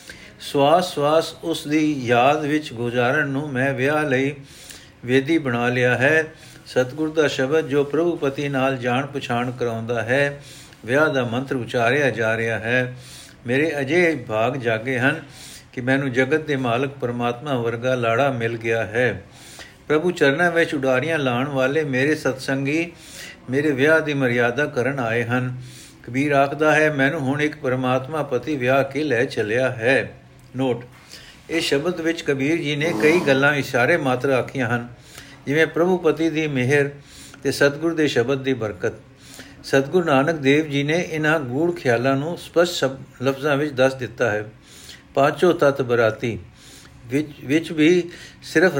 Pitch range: 125-150 Hz